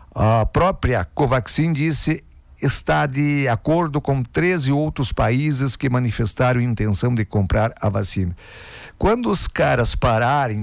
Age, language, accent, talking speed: 50-69, Portuguese, Brazilian, 125 wpm